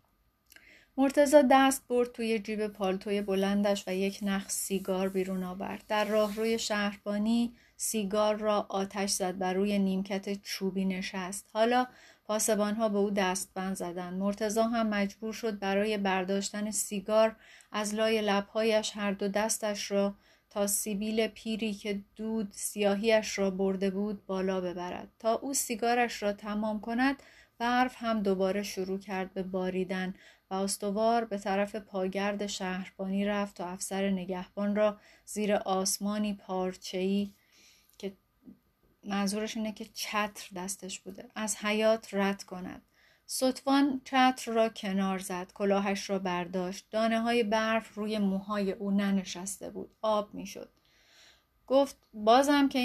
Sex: female